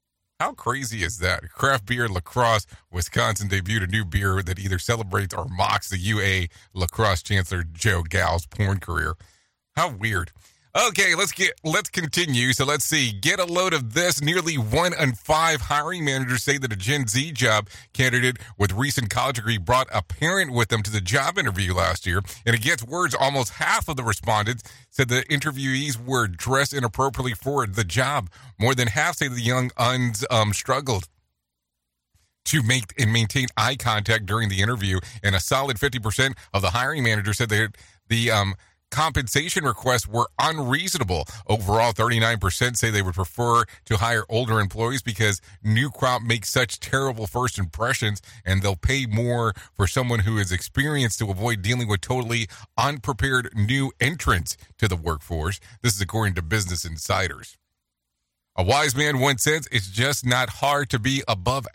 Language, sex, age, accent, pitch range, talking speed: English, male, 30-49, American, 100-130 Hz, 170 wpm